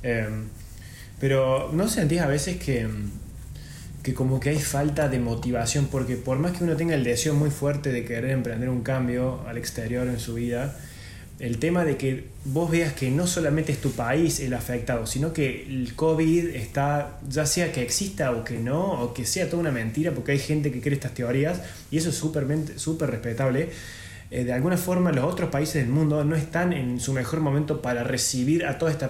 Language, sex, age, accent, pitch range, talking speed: Spanish, male, 20-39, Argentinian, 125-160 Hz, 200 wpm